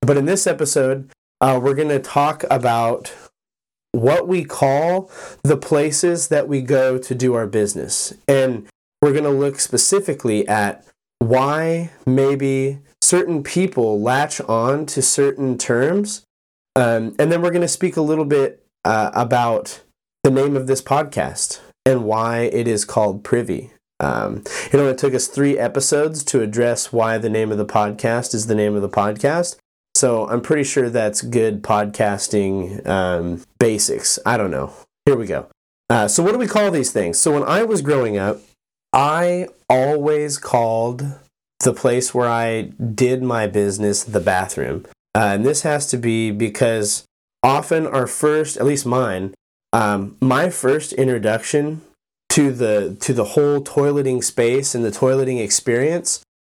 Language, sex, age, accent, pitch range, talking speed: English, male, 30-49, American, 115-150 Hz, 160 wpm